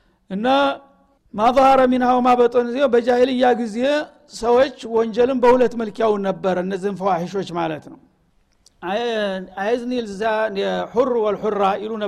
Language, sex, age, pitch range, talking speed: Amharic, male, 60-79, 195-250 Hz, 125 wpm